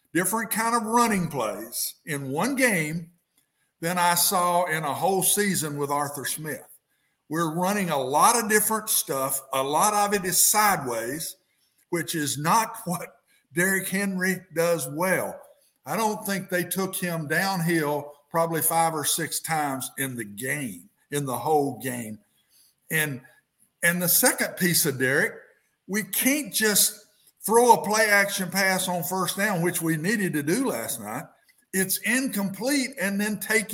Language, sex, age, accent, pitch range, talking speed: English, male, 50-69, American, 165-220 Hz, 155 wpm